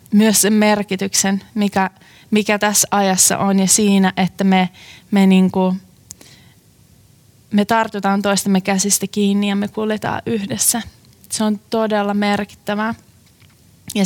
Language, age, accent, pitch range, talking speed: Finnish, 20-39, native, 185-210 Hz, 120 wpm